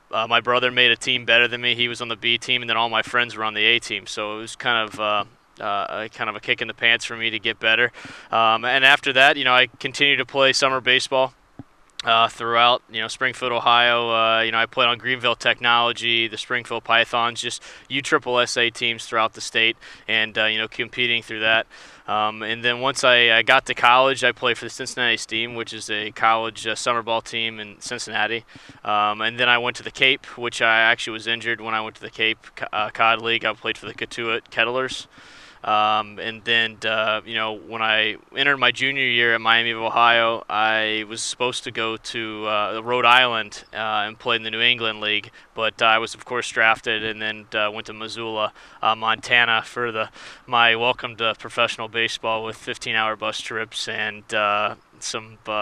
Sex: male